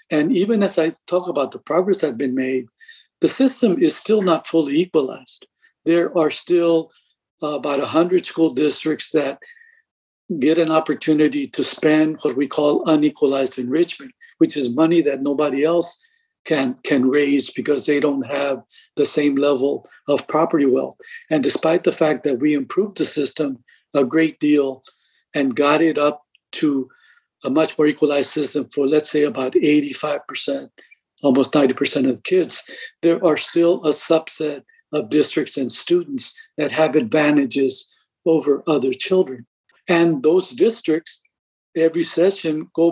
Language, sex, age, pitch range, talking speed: English, male, 50-69, 145-195 Hz, 150 wpm